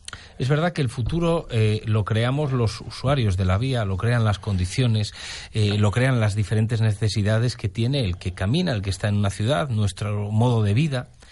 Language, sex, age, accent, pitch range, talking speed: Spanish, male, 40-59, Spanish, 100-135 Hz, 200 wpm